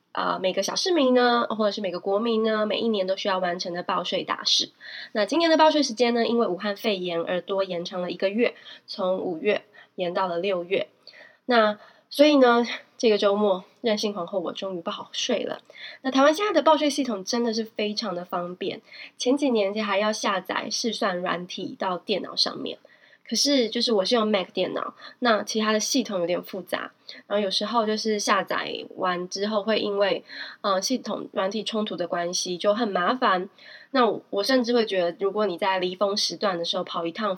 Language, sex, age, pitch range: Chinese, female, 20-39, 190-240 Hz